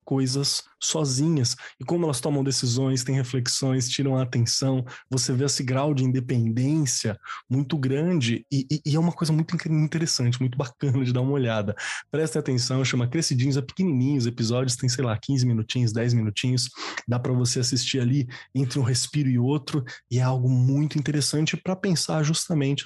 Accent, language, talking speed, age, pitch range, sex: Brazilian, Portuguese, 175 wpm, 20-39, 120-155 Hz, male